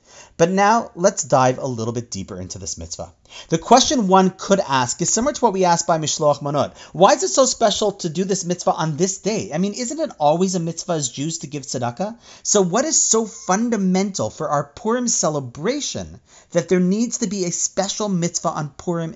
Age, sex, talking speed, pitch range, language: 40-59, male, 215 wpm, 130-195 Hz, English